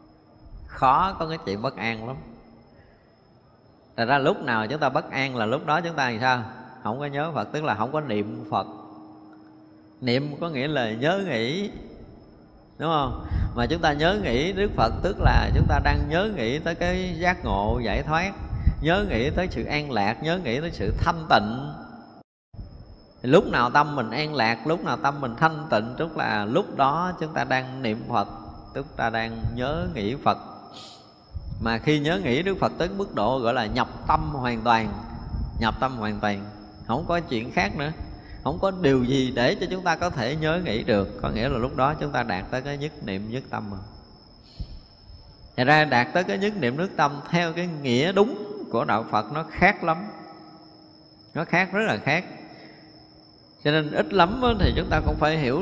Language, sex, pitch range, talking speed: Vietnamese, male, 110-155 Hz, 200 wpm